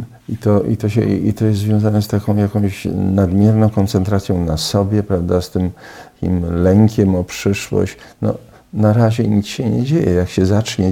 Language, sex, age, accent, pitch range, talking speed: Polish, male, 50-69, native, 90-110 Hz, 175 wpm